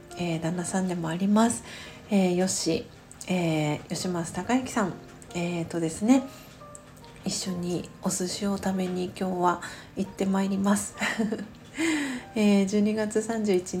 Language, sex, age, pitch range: Japanese, female, 40-59, 175-210 Hz